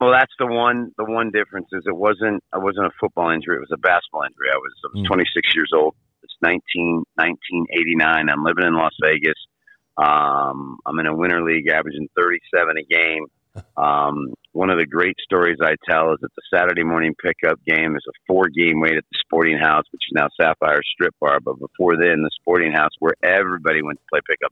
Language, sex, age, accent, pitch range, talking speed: English, male, 50-69, American, 80-100 Hz, 210 wpm